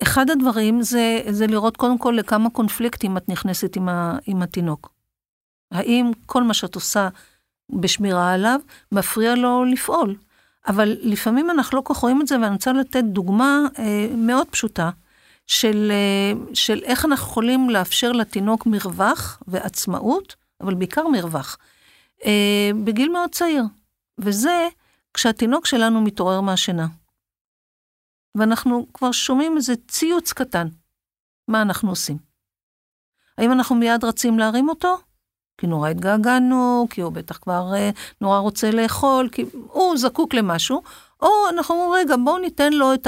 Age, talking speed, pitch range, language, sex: 50-69, 140 wpm, 205-265 Hz, Hebrew, female